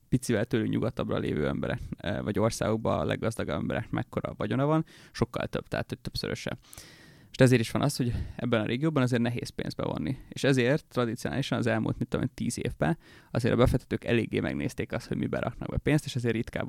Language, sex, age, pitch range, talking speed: Hungarian, male, 20-39, 115-135 Hz, 195 wpm